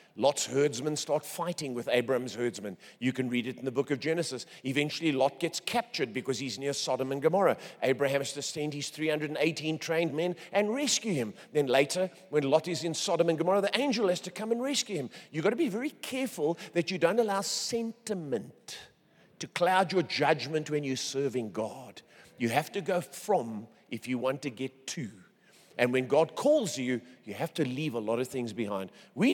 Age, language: 50-69, English